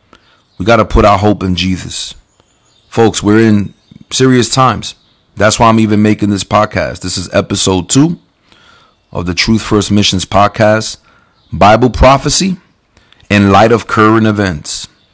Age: 30-49